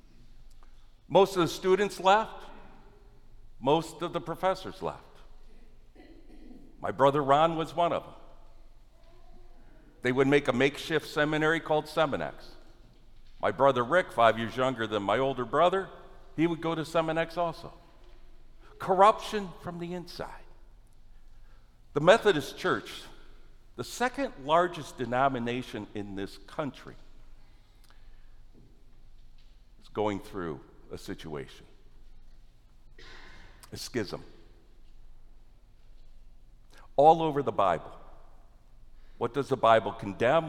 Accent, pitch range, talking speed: American, 115-165 Hz, 105 wpm